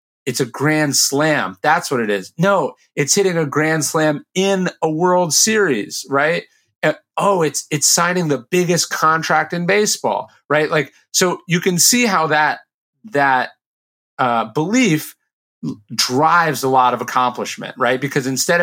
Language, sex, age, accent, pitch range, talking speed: English, male, 30-49, American, 125-175 Hz, 150 wpm